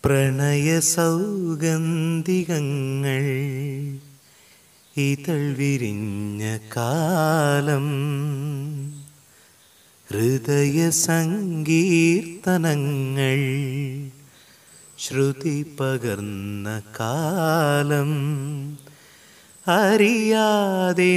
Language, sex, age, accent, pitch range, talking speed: Malayalam, male, 30-49, native, 140-185 Hz, 30 wpm